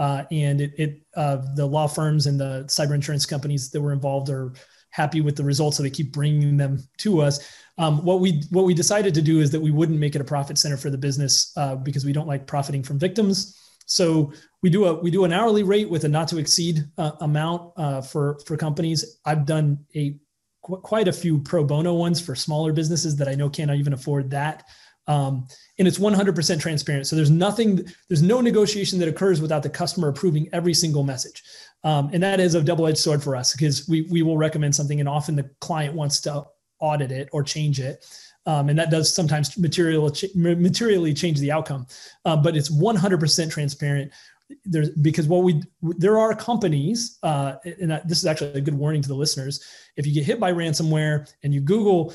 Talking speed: 215 wpm